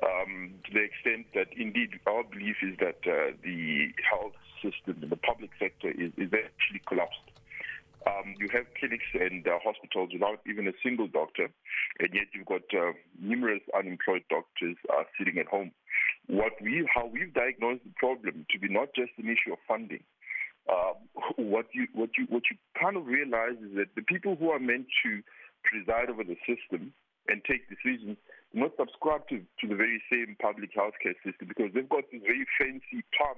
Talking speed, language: 185 wpm, English